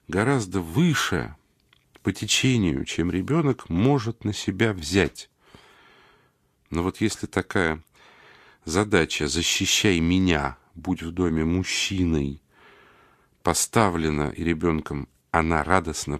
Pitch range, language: 80-115 Hz, Russian